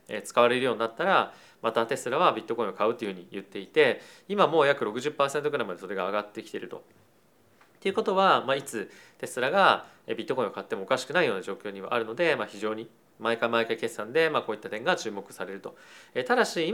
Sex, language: male, Japanese